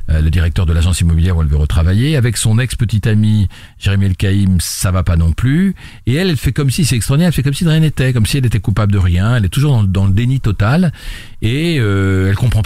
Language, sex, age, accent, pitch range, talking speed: French, male, 50-69, French, 85-120 Hz, 245 wpm